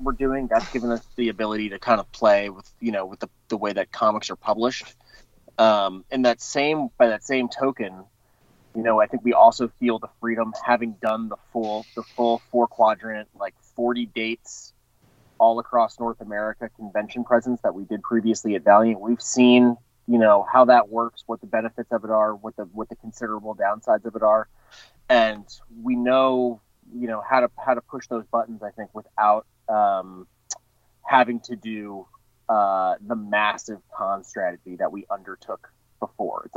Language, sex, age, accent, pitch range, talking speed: English, male, 30-49, American, 105-120 Hz, 185 wpm